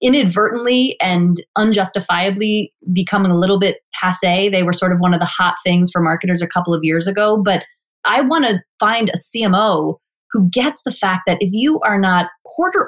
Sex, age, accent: female, 30-49, American